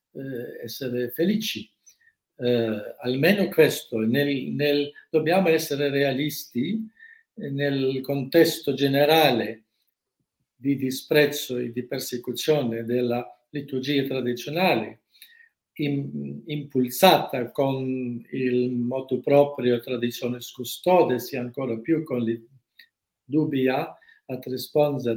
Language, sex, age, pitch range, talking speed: Italian, male, 50-69, 125-170 Hz, 90 wpm